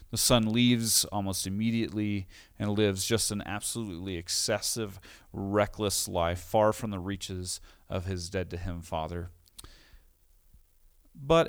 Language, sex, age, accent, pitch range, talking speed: English, male, 40-59, American, 95-125 Hz, 115 wpm